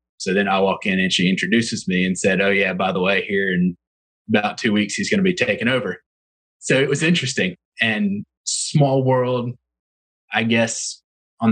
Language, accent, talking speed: English, American, 195 wpm